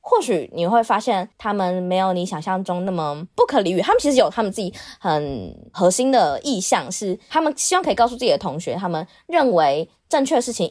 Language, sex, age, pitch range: Chinese, female, 20-39, 180-245 Hz